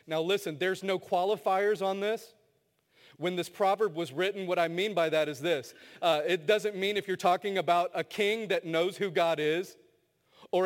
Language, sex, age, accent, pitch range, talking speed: English, male, 40-59, American, 160-210 Hz, 195 wpm